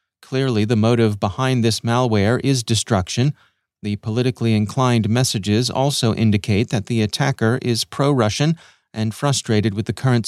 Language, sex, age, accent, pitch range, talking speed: English, male, 40-59, American, 115-145 Hz, 140 wpm